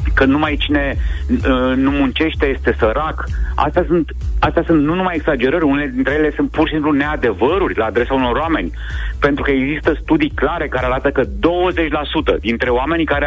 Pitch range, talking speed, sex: 105-160 Hz, 170 wpm, male